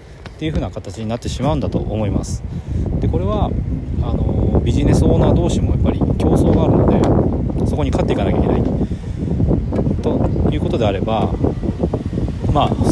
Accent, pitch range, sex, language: native, 90-120 Hz, male, Japanese